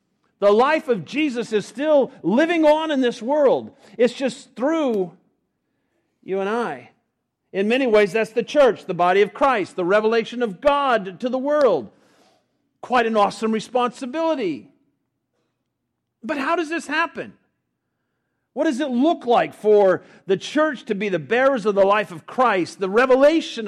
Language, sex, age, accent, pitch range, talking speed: English, male, 50-69, American, 190-275 Hz, 155 wpm